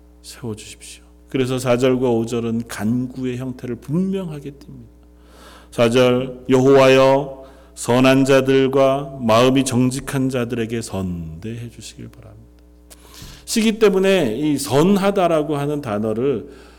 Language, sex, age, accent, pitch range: Korean, male, 40-59, native, 100-160 Hz